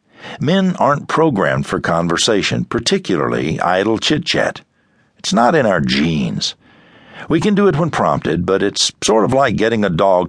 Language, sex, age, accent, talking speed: English, male, 60-79, American, 155 wpm